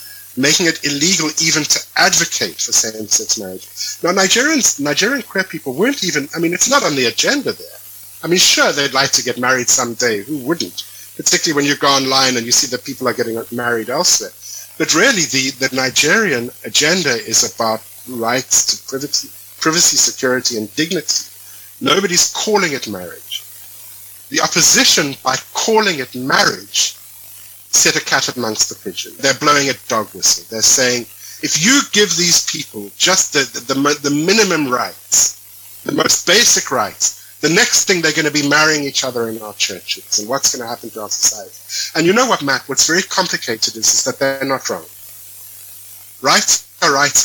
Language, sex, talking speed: English, male, 180 wpm